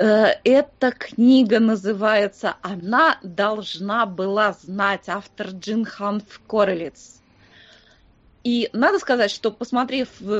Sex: female